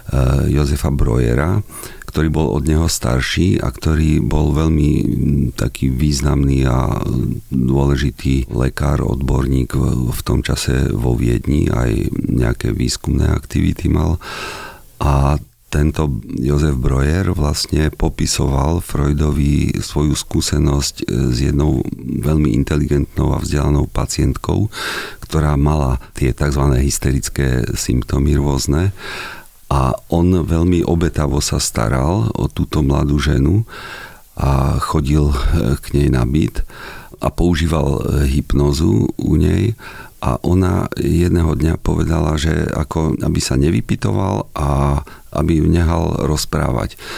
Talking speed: 110 wpm